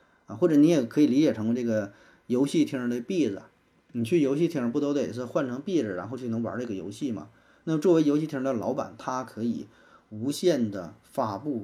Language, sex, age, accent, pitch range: Chinese, male, 30-49, native, 110-145 Hz